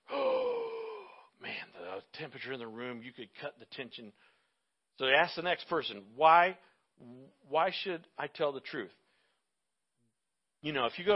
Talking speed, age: 160 wpm, 50-69